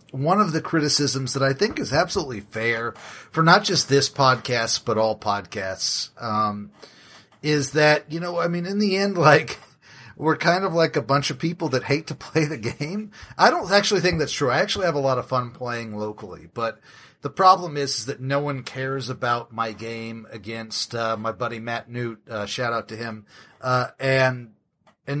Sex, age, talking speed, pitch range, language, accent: male, 40-59, 200 wpm, 115-150 Hz, English, American